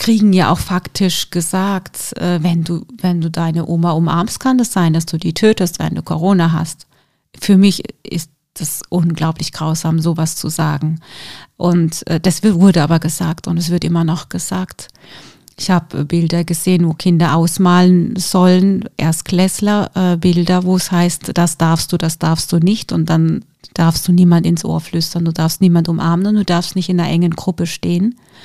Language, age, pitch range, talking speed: German, 40-59, 165-185 Hz, 180 wpm